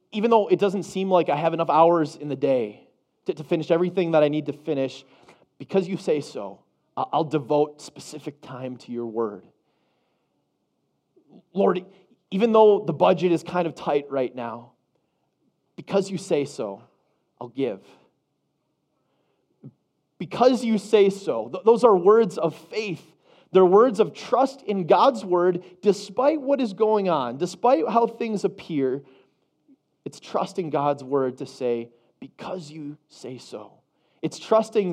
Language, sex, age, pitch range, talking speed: English, male, 30-49, 140-195 Hz, 150 wpm